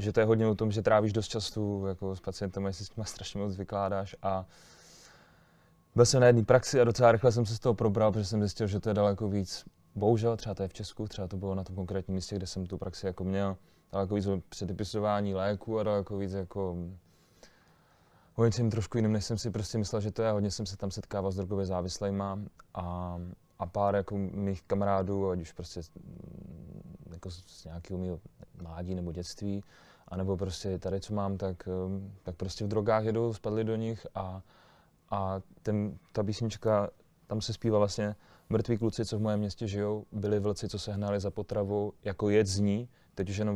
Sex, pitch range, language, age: male, 95-105 Hz, Czech, 20-39